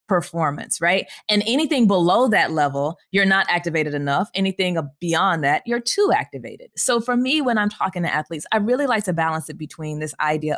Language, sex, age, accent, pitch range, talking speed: English, female, 20-39, American, 170-230 Hz, 195 wpm